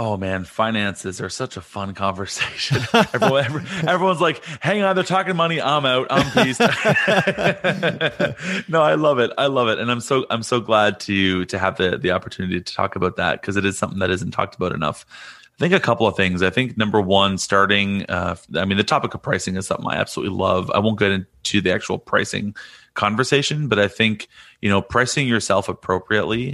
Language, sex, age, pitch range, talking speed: English, male, 30-49, 95-125 Hz, 205 wpm